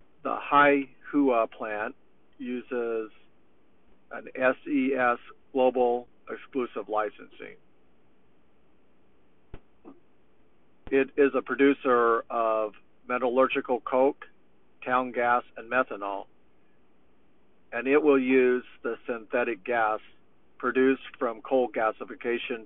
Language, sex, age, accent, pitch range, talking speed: English, male, 50-69, American, 110-130 Hz, 80 wpm